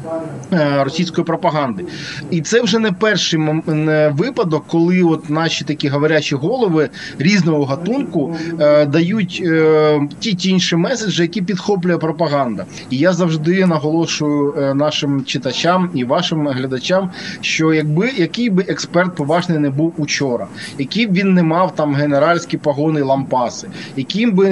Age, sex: 20-39, male